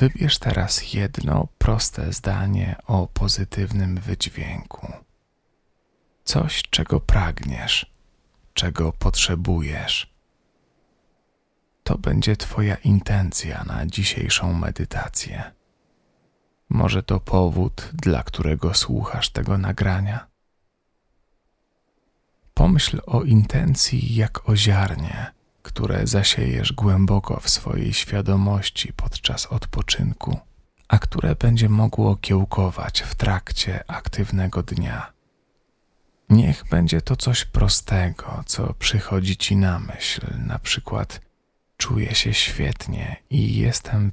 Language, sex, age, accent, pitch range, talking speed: Polish, male, 40-59, native, 95-110 Hz, 90 wpm